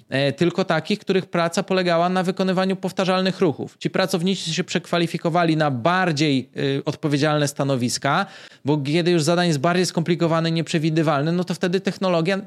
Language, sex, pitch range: Polish, male, 145-185 Hz